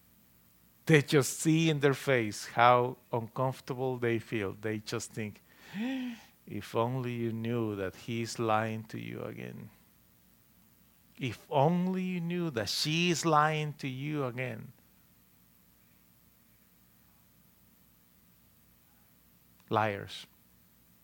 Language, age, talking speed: English, 40-59, 100 wpm